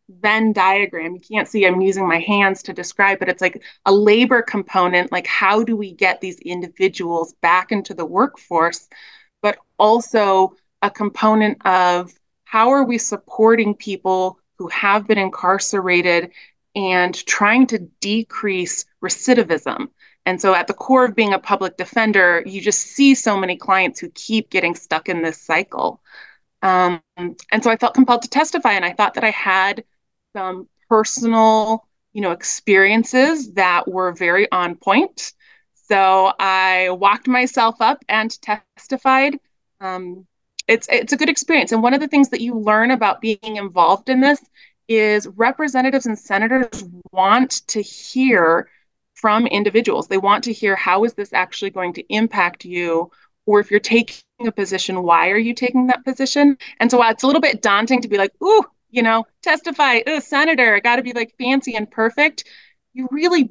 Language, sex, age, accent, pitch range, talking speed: English, female, 20-39, American, 190-245 Hz, 170 wpm